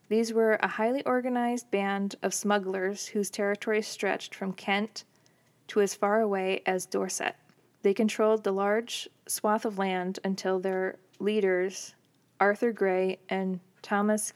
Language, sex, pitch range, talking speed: English, female, 190-215 Hz, 140 wpm